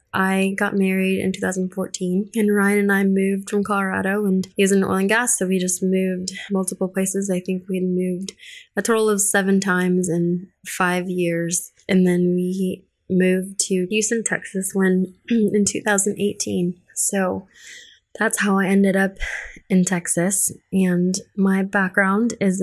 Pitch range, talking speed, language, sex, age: 180-195 Hz, 160 wpm, English, female, 20-39